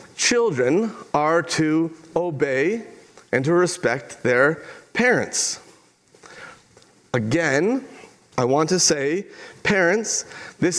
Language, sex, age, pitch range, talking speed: English, male, 40-59, 150-180 Hz, 90 wpm